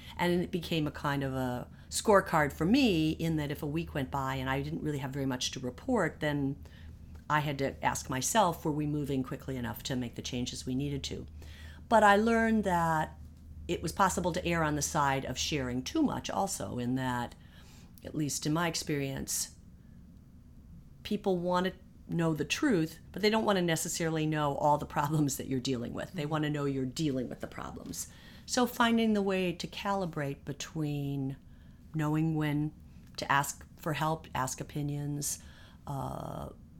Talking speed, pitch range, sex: 185 wpm, 130-160 Hz, female